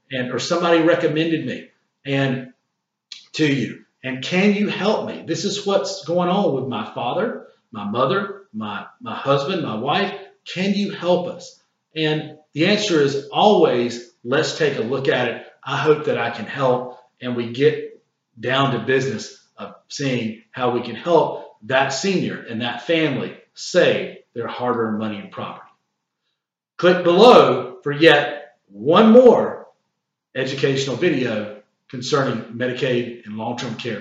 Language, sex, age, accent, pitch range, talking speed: English, male, 40-59, American, 130-195 Hz, 150 wpm